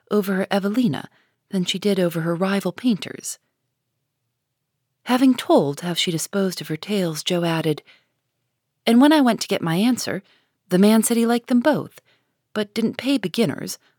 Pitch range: 145-220 Hz